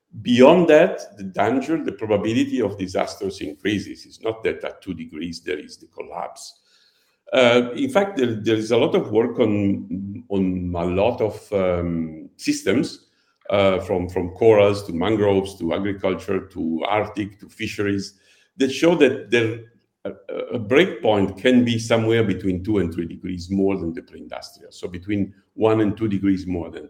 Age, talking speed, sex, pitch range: 50-69, 165 wpm, male, 95-125 Hz